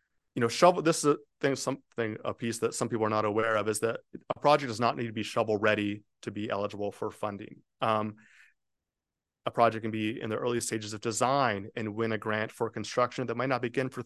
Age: 30-49